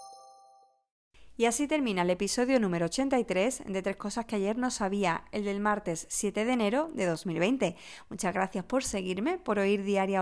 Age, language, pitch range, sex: 20-39, Spanish, 190-245 Hz, female